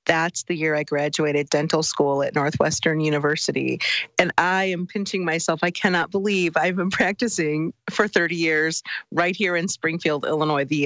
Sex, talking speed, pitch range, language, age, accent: female, 165 wpm, 155-210 Hz, English, 40-59, American